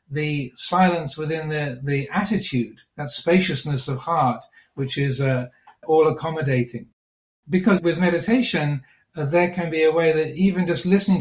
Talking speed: 150 wpm